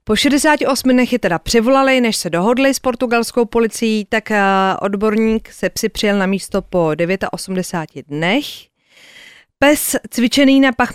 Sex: female